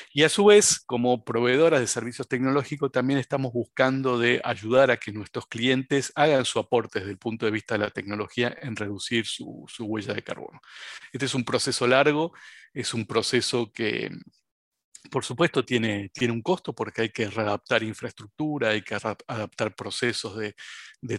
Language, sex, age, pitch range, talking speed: Spanish, male, 50-69, 115-135 Hz, 175 wpm